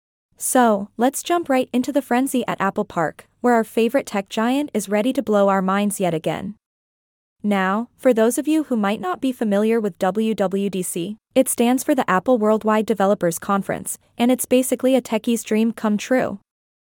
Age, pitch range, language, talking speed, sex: 20-39, 200-250 Hz, English, 180 wpm, female